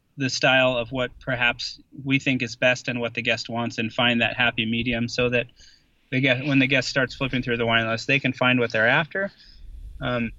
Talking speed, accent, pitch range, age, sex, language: 225 wpm, American, 115-130 Hz, 20-39, male, English